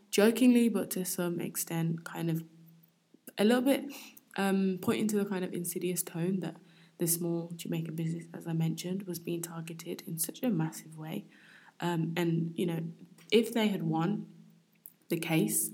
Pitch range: 165-185 Hz